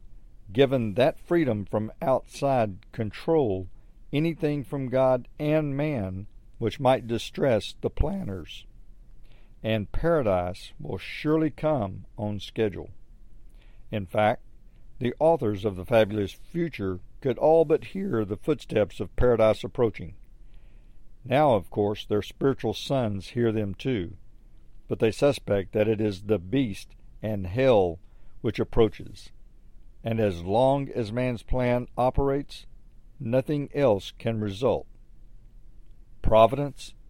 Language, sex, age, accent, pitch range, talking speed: English, male, 50-69, American, 100-130 Hz, 120 wpm